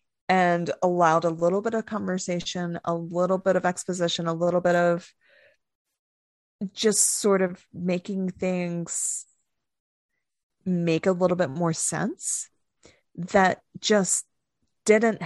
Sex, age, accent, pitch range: female, 20-39, American, 170-205 Hz